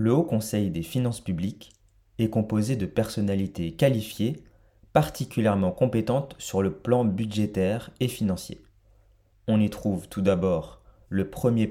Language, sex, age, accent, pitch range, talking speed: French, male, 30-49, French, 95-115 Hz, 135 wpm